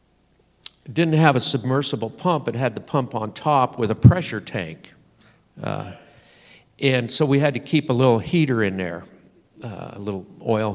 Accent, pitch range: American, 105-130 Hz